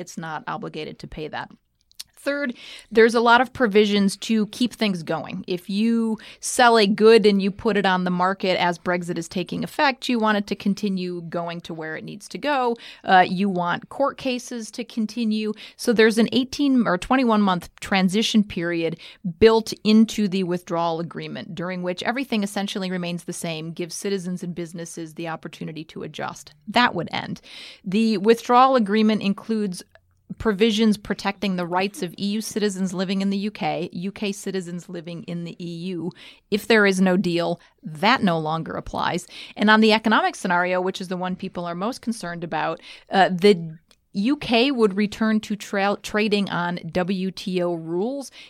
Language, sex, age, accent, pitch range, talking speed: English, female, 30-49, American, 180-220 Hz, 170 wpm